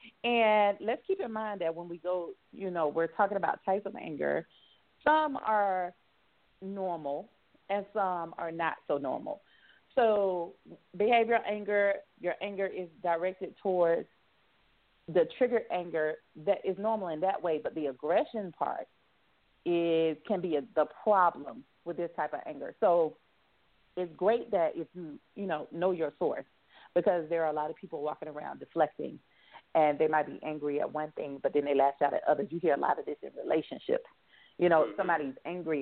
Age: 40-59